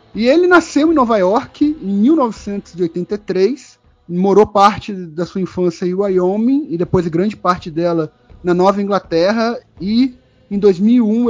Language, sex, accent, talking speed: Portuguese, male, Brazilian, 140 wpm